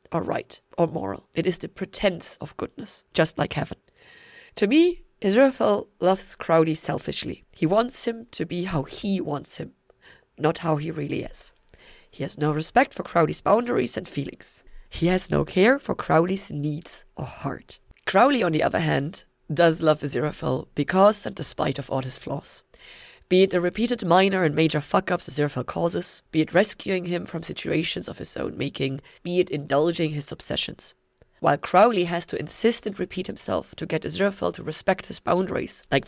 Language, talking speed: English, 180 wpm